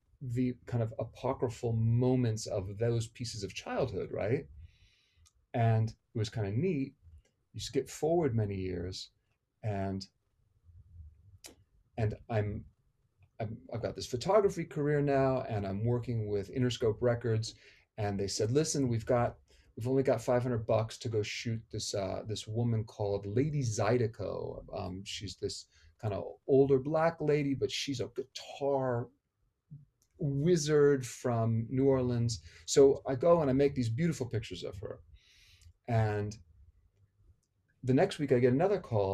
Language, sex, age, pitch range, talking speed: English, male, 40-59, 100-130 Hz, 145 wpm